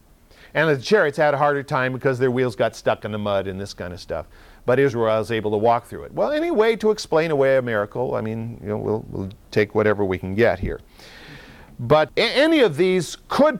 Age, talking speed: 50-69, 225 wpm